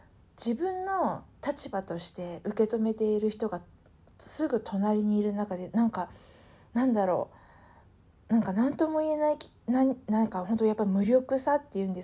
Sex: female